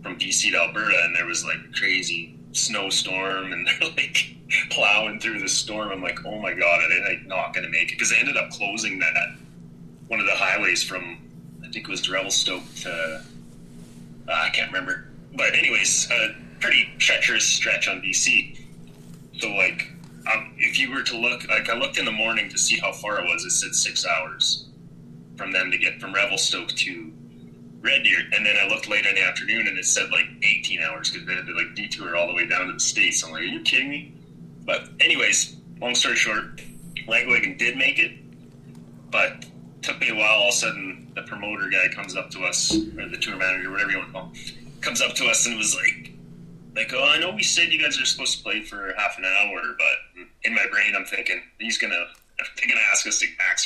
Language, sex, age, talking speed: English, male, 30-49, 220 wpm